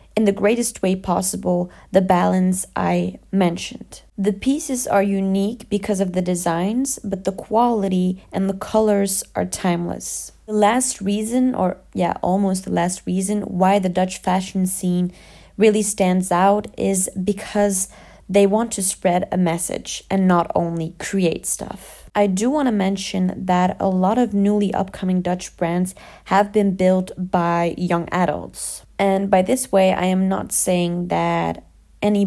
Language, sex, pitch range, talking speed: English, female, 180-205 Hz, 155 wpm